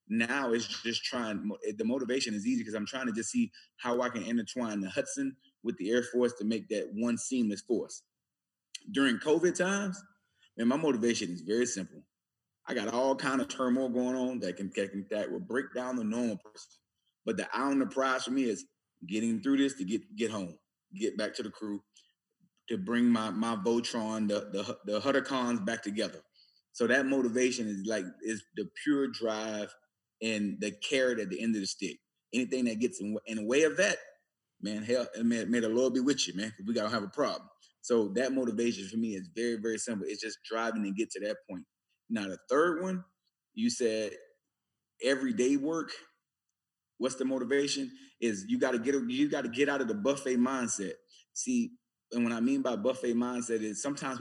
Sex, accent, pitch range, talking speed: male, American, 110-140 Hz, 200 wpm